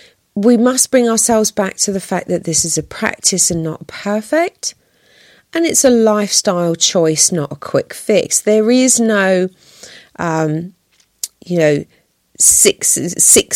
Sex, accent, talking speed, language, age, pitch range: female, British, 140 wpm, English, 40-59, 155-210 Hz